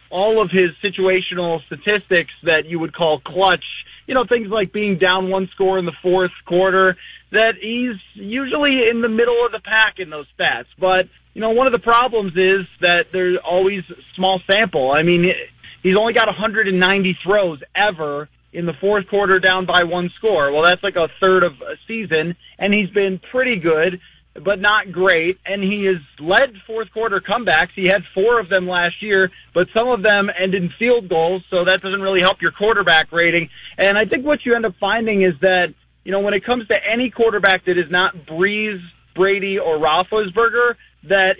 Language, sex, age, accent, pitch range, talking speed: English, male, 20-39, American, 180-210 Hz, 195 wpm